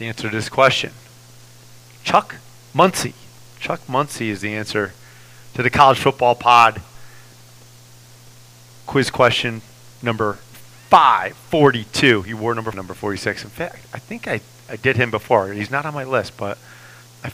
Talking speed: 150 wpm